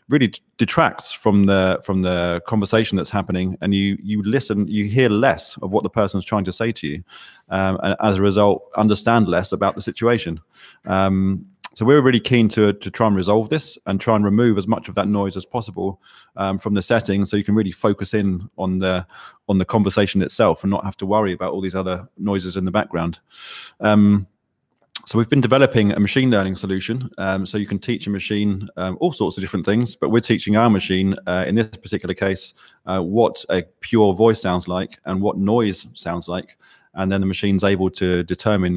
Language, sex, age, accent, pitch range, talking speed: English, male, 20-39, British, 95-105 Hz, 215 wpm